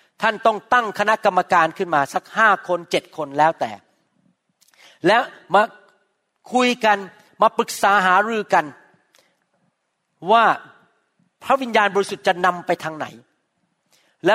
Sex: male